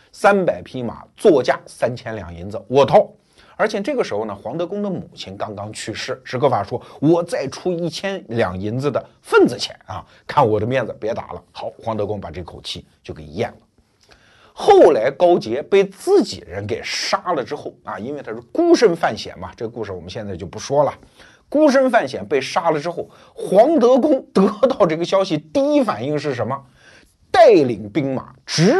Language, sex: Chinese, male